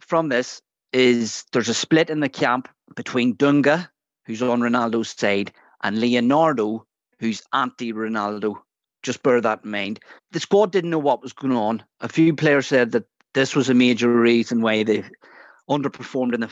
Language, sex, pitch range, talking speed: English, male, 115-155 Hz, 170 wpm